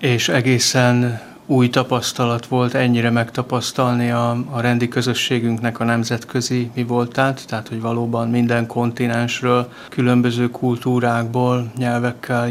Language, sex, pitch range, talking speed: Hungarian, male, 120-130 Hz, 110 wpm